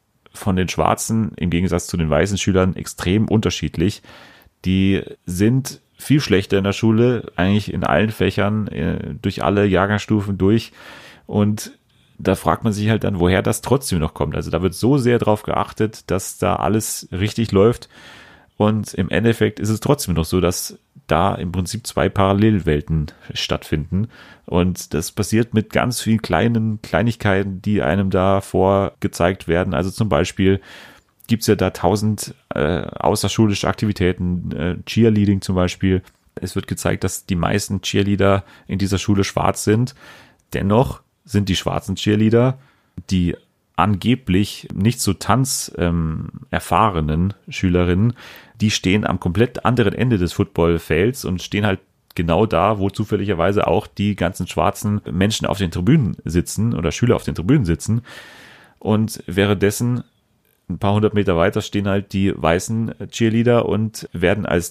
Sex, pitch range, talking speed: male, 90-110 Hz, 150 wpm